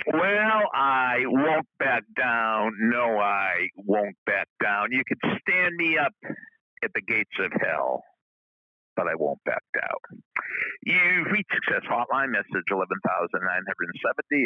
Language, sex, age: English, male, 60-79